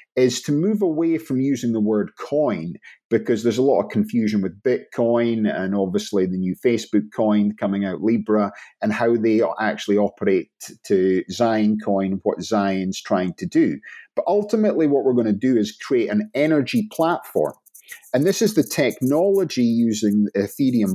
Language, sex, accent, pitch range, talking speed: English, male, British, 105-150 Hz, 165 wpm